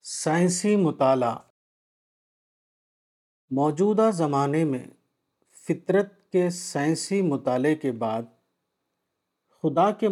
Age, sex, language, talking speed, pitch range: 50-69, male, Urdu, 75 wpm, 130-170 Hz